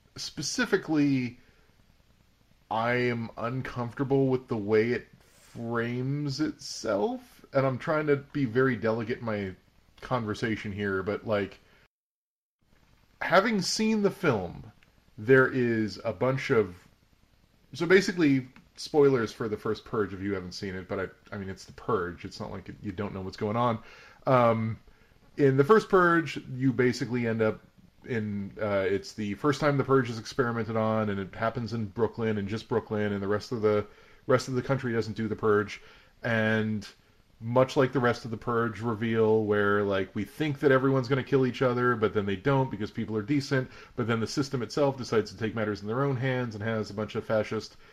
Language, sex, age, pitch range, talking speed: English, male, 30-49, 105-135 Hz, 185 wpm